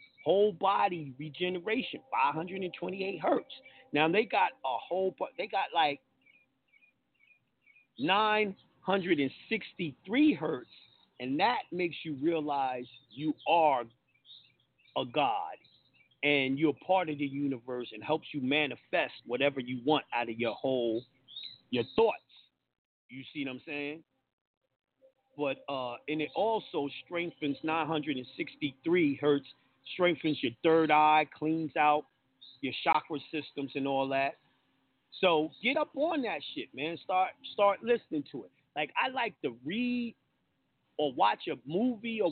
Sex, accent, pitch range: male, American, 140-190 Hz